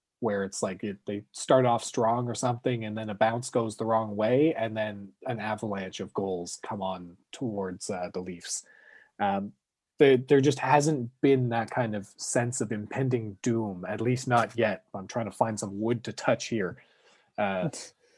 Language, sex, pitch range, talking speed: English, male, 110-130 Hz, 190 wpm